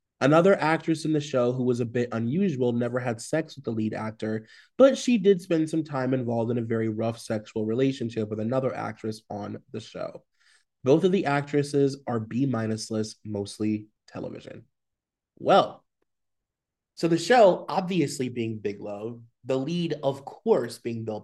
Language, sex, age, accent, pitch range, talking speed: English, male, 20-39, American, 115-145 Hz, 165 wpm